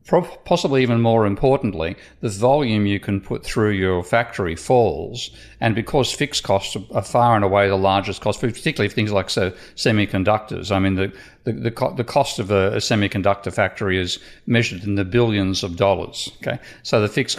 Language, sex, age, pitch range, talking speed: English, male, 50-69, 100-120 Hz, 185 wpm